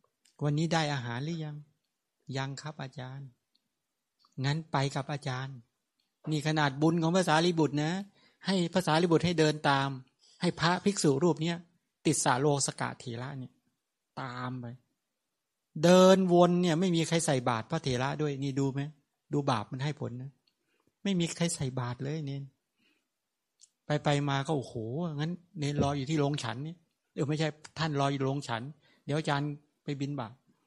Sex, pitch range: male, 135-165 Hz